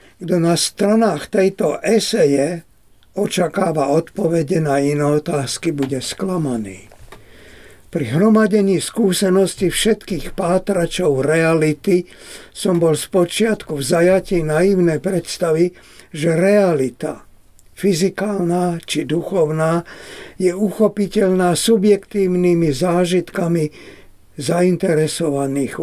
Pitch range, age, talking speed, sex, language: 155-195 Hz, 60-79, 80 wpm, male, Slovak